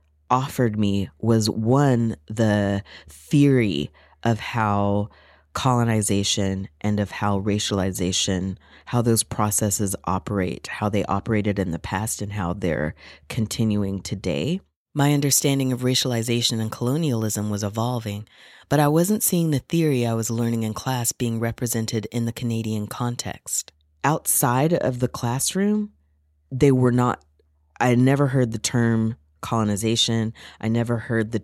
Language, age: English, 30-49